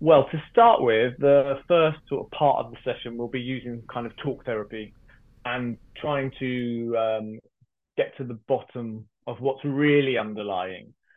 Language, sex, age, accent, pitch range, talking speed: English, male, 30-49, British, 120-150 Hz, 165 wpm